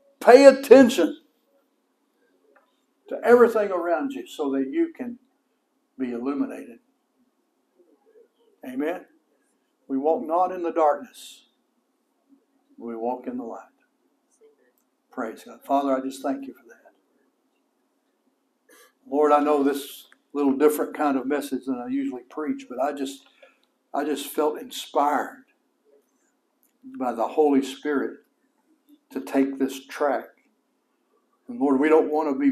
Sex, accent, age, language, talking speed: male, American, 60-79, English, 125 wpm